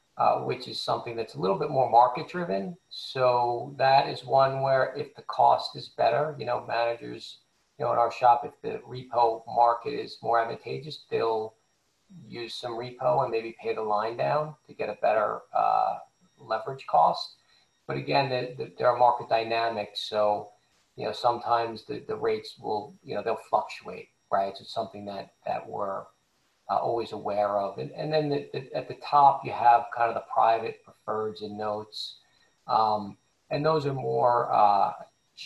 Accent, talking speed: American, 175 wpm